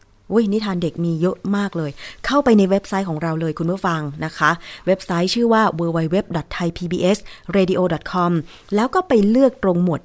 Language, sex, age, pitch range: Thai, female, 20-39, 160-200 Hz